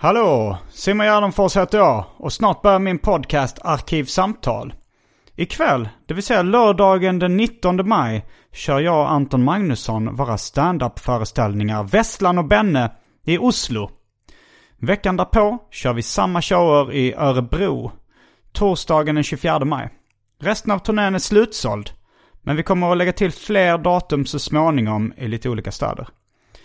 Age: 30-49